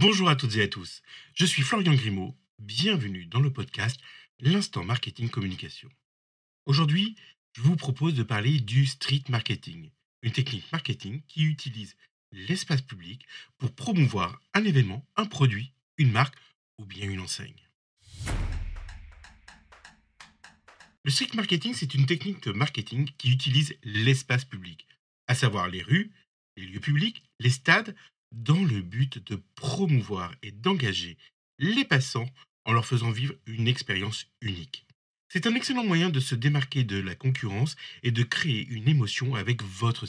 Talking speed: 150 wpm